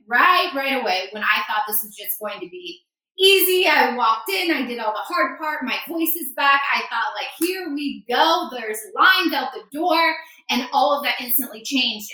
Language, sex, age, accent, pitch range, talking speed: English, female, 20-39, American, 225-300 Hz, 215 wpm